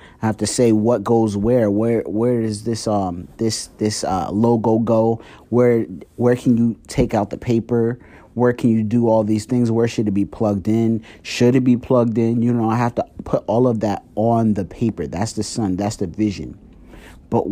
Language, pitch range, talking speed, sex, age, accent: English, 100-120 Hz, 210 wpm, male, 30-49, American